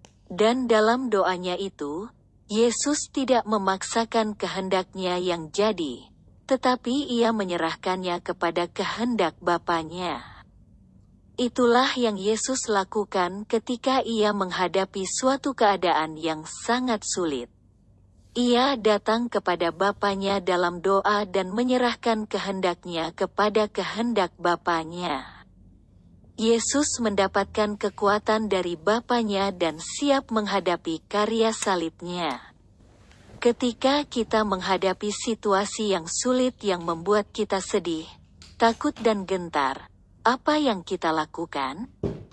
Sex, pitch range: female, 175-230 Hz